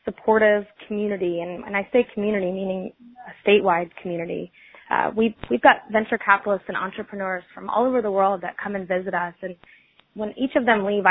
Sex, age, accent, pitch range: female, 20-39, American, 185-205 Hz